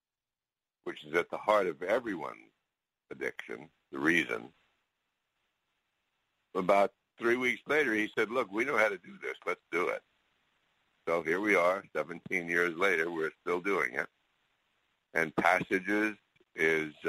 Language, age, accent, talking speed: English, 60-79, American, 140 wpm